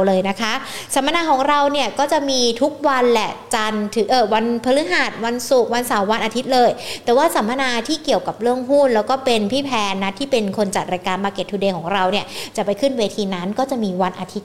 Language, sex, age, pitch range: Thai, female, 60-79, 210-270 Hz